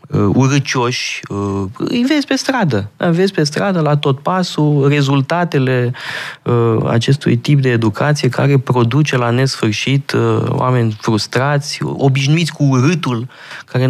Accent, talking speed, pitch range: native, 110 wpm, 110-140 Hz